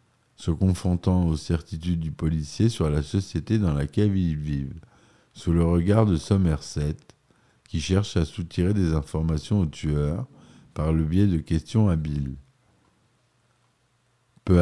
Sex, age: male, 50-69